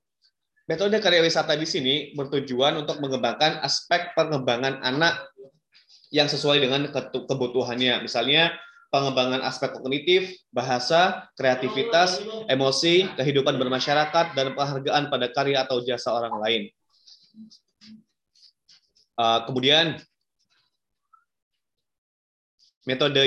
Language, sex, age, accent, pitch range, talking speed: Indonesian, male, 20-39, native, 130-155 Hz, 95 wpm